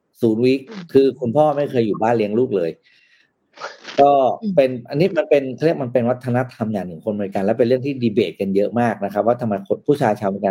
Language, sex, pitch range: Thai, male, 105-140 Hz